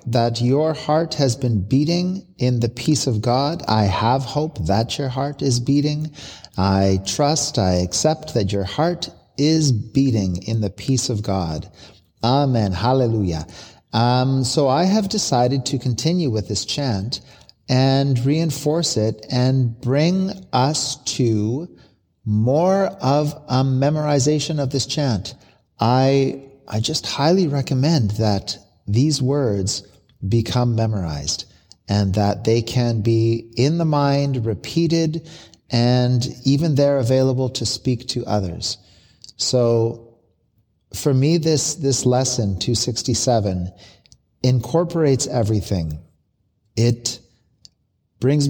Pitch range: 110-140 Hz